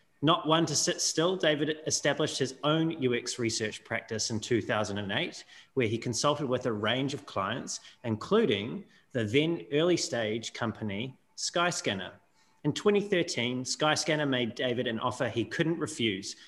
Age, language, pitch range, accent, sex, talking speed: 30-49, English, 110-145 Hz, Australian, male, 140 wpm